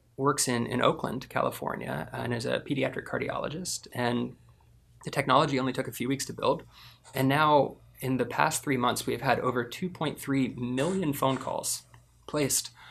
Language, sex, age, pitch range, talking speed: English, male, 20-39, 120-145 Hz, 165 wpm